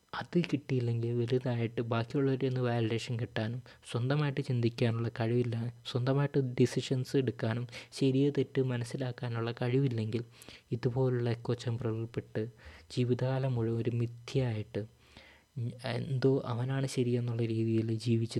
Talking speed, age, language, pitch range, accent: 95 wpm, 20-39, Malayalam, 115-130 Hz, native